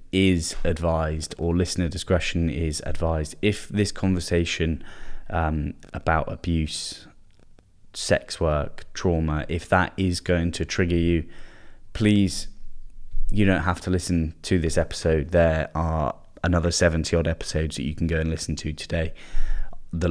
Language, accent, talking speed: English, British, 135 wpm